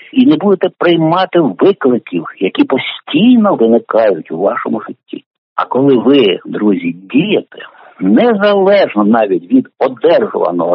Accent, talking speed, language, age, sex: native, 110 wpm, Ukrainian, 60-79, male